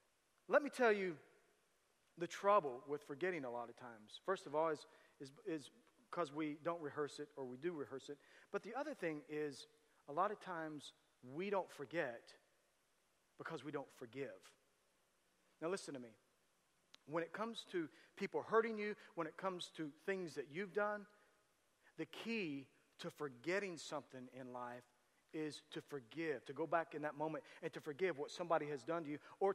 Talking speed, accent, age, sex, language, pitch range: 180 wpm, American, 40-59, male, English, 150-215 Hz